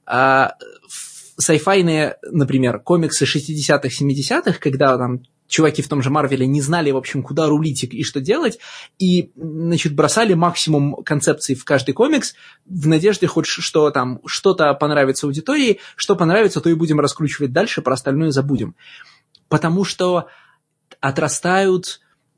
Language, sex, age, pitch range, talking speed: Russian, male, 20-39, 145-180 Hz, 130 wpm